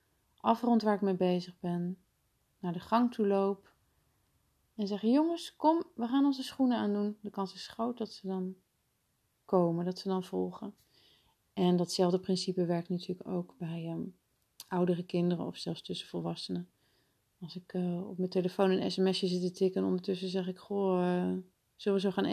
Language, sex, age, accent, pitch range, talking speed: Dutch, female, 30-49, Dutch, 180-215 Hz, 180 wpm